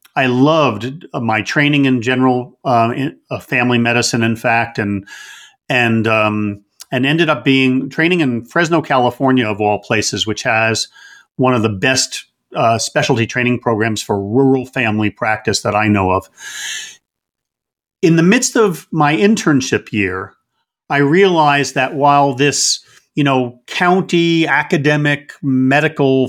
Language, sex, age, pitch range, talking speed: English, male, 50-69, 120-165 Hz, 140 wpm